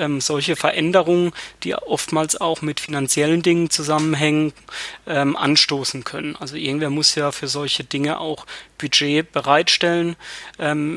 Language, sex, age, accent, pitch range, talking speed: German, male, 30-49, German, 150-170 Hz, 125 wpm